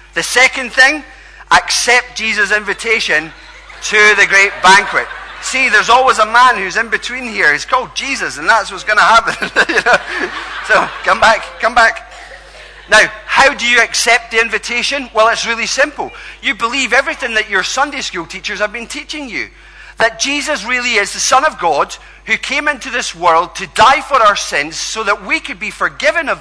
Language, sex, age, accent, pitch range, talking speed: English, male, 40-59, British, 200-265 Hz, 185 wpm